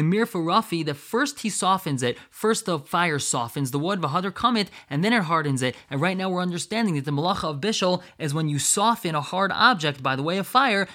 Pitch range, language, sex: 155-195 Hz, English, male